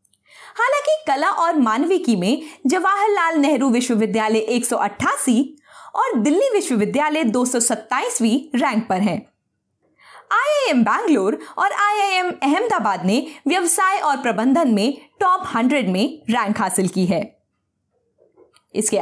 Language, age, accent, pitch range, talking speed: Hindi, 20-39, native, 235-355 Hz, 105 wpm